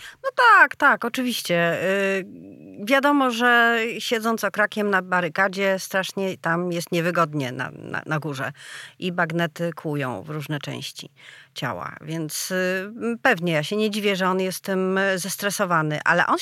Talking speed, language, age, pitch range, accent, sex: 145 wpm, Polish, 40-59, 175-250 Hz, native, female